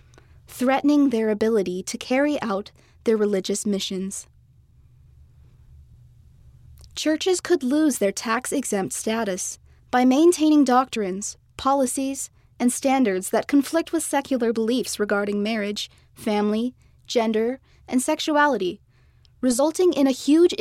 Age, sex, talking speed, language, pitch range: 20-39, female, 105 wpm, English, 215-275 Hz